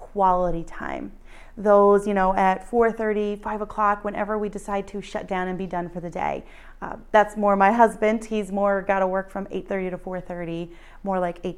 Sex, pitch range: female, 180-215 Hz